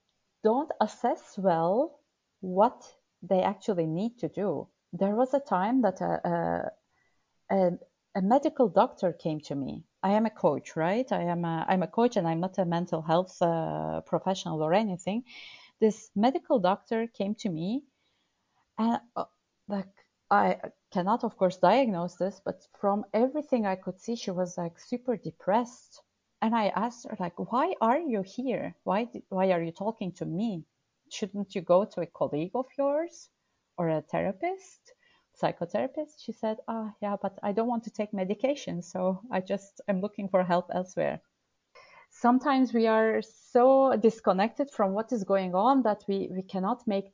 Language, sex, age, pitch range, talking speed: English, female, 30-49, 180-240 Hz, 170 wpm